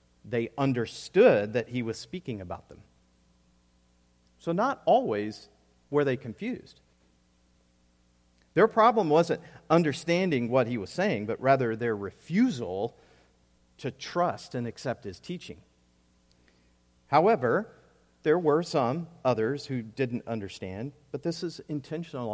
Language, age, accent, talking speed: English, 50-69, American, 120 wpm